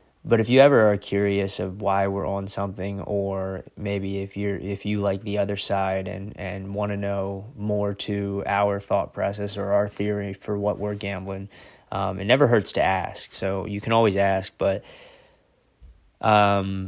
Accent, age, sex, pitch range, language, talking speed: American, 20-39, male, 95-105 Hz, English, 180 wpm